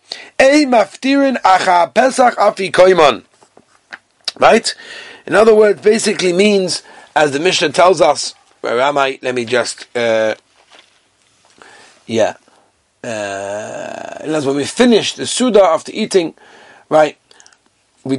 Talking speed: 110 wpm